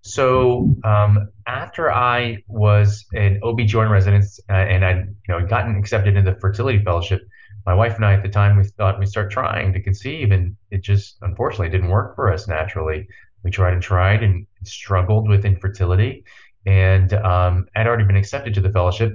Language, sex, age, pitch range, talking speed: English, male, 30-49, 95-110 Hz, 190 wpm